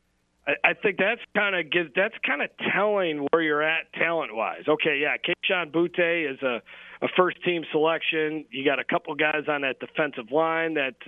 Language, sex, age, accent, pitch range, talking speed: English, male, 40-59, American, 140-180 Hz, 175 wpm